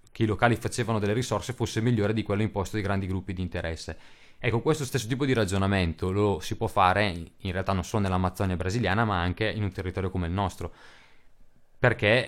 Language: Italian